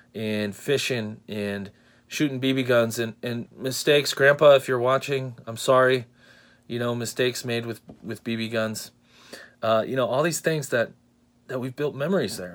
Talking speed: 165 wpm